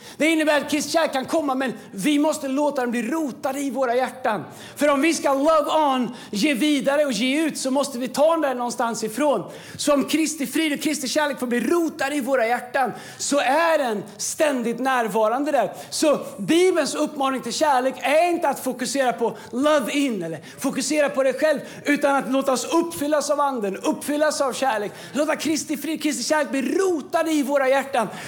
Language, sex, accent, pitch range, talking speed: Swedish, male, native, 220-290 Hz, 190 wpm